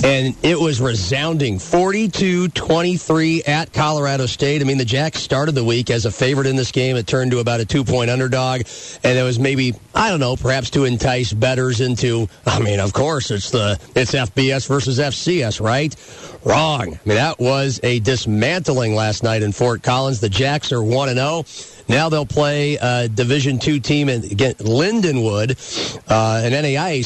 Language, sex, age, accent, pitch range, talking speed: English, male, 40-59, American, 120-150 Hz, 175 wpm